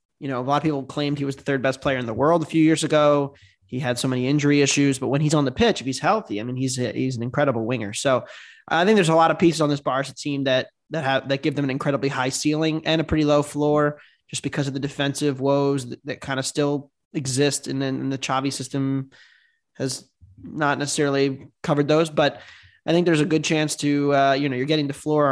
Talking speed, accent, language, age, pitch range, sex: 255 wpm, American, English, 20-39, 135-155 Hz, male